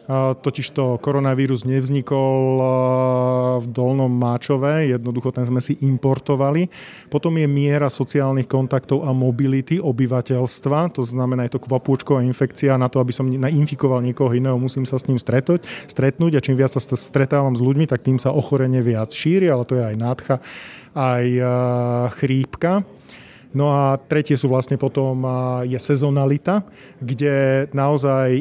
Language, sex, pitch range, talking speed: Slovak, male, 125-140 Hz, 145 wpm